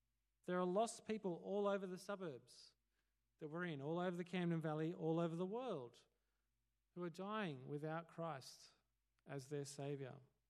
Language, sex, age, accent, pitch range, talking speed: English, male, 40-59, Australian, 140-195 Hz, 160 wpm